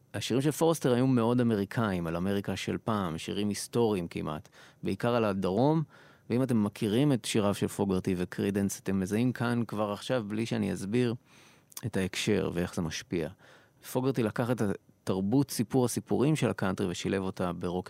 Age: 30-49